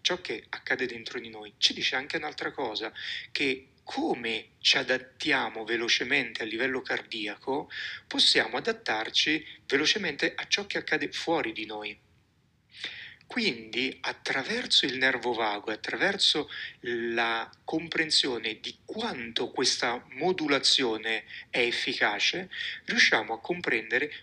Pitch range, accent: 110-135 Hz, native